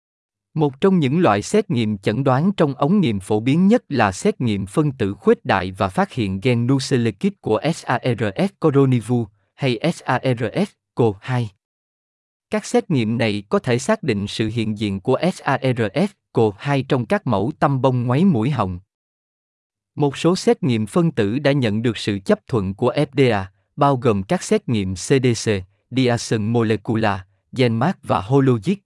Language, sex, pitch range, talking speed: Vietnamese, male, 110-155 Hz, 170 wpm